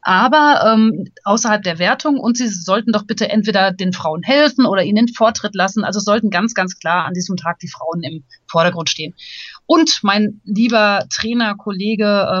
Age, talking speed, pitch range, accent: 30-49, 175 wpm, 180-220 Hz, German